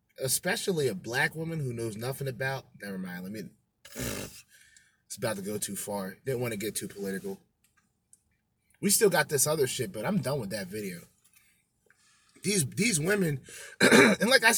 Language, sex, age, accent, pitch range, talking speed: English, male, 20-39, American, 125-185 Hz, 175 wpm